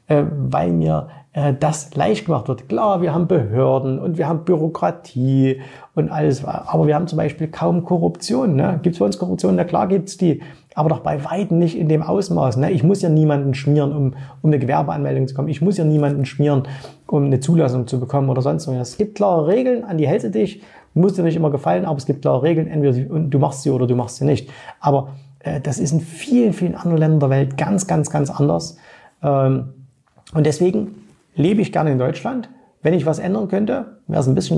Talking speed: 215 wpm